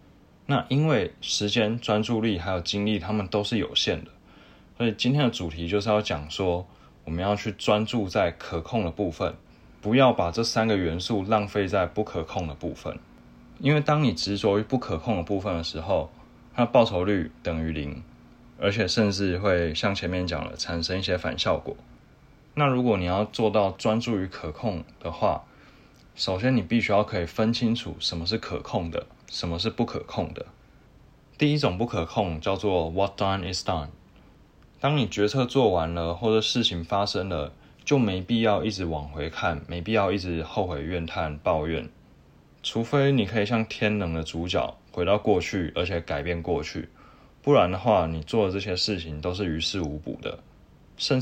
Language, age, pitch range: Chinese, 20-39, 85-110 Hz